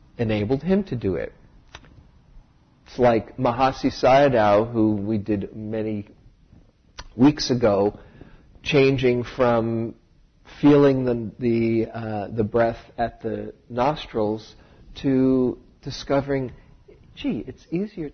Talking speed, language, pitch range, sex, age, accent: 105 wpm, English, 110-135 Hz, male, 50-69, American